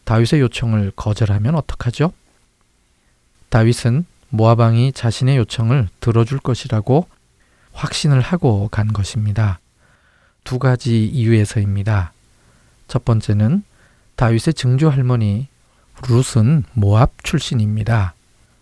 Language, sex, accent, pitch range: Korean, male, native, 105-130 Hz